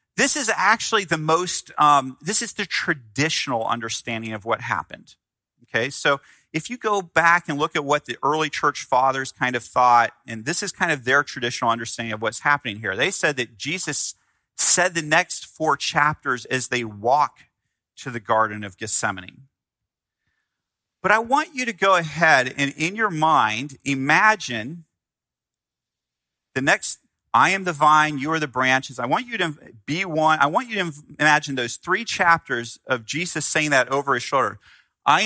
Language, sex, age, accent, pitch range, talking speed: English, male, 40-59, American, 125-180 Hz, 175 wpm